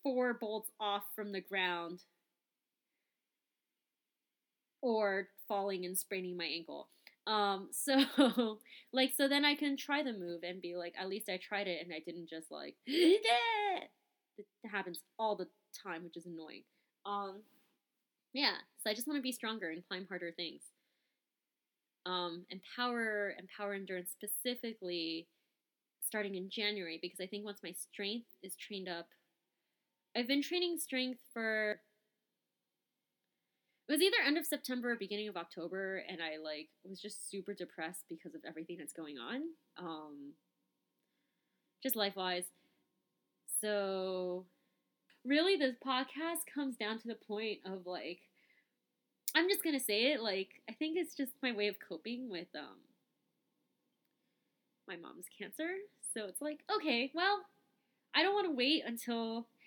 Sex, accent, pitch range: female, American, 185-260 Hz